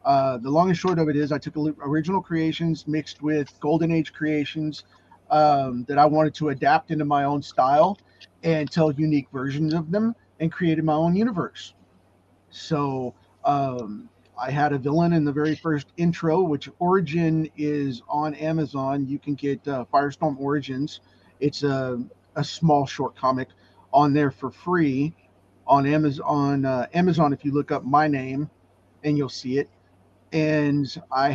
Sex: male